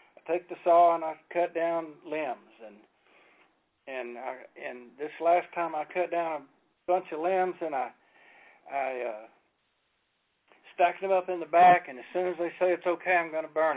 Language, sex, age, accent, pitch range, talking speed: English, male, 60-79, American, 165-225 Hz, 190 wpm